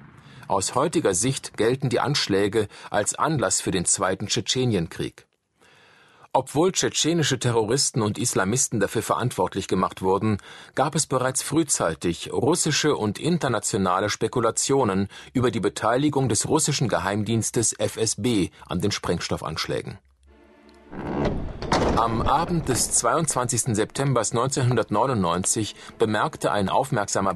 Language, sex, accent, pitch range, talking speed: German, male, German, 100-135 Hz, 105 wpm